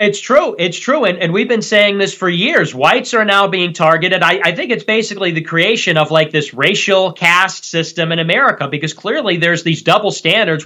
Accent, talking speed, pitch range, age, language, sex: American, 215 wpm, 170-225 Hz, 30-49, English, male